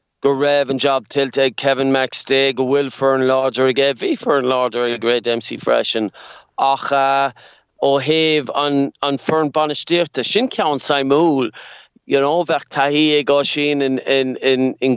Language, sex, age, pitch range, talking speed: English, male, 30-49, 130-145 Hz, 165 wpm